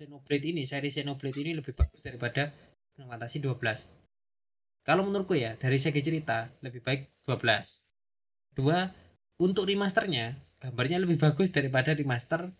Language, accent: Indonesian, native